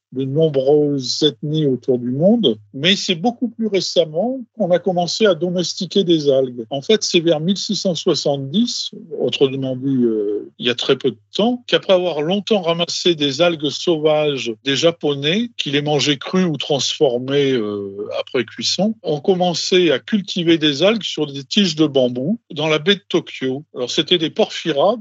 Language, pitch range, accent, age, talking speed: French, 140-180 Hz, French, 50-69, 170 wpm